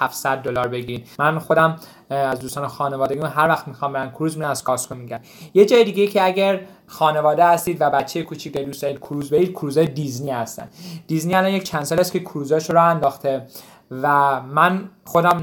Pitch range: 145-175 Hz